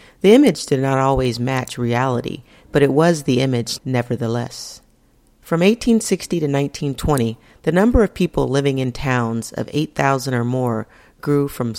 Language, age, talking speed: English, 40-59, 155 wpm